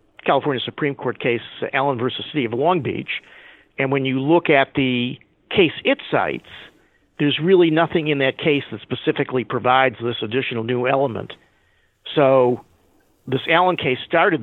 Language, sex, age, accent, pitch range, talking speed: English, male, 50-69, American, 125-150 Hz, 155 wpm